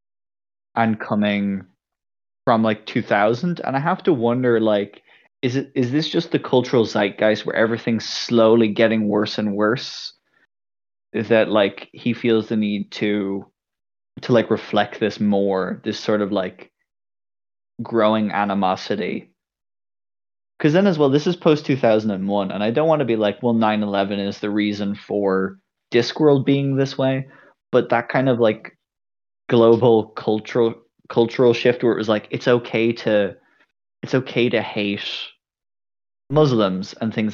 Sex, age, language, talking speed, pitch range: male, 20-39, English, 150 wpm, 100-120 Hz